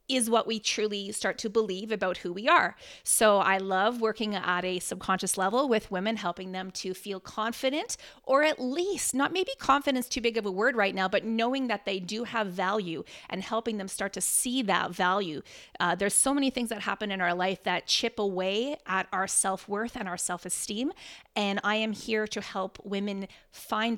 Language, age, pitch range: English, 30-49, 200-240 Hz